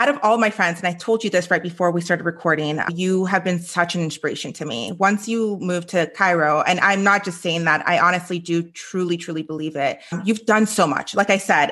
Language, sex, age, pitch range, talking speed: English, female, 30-49, 170-205 Hz, 245 wpm